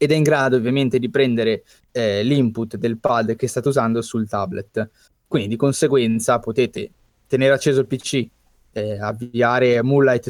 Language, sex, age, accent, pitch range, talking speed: Italian, male, 20-39, native, 120-135 Hz, 155 wpm